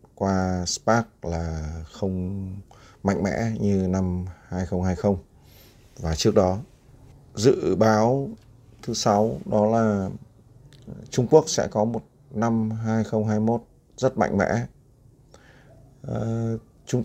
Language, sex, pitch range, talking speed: Vietnamese, male, 95-125 Hz, 100 wpm